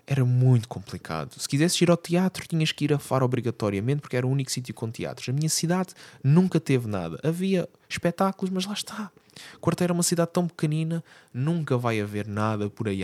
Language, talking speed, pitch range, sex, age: Portuguese, 205 wpm, 120-160 Hz, male, 20-39